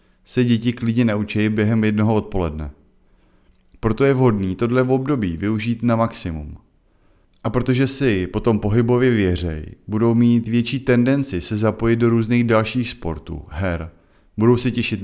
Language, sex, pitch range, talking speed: Czech, male, 90-120 Hz, 145 wpm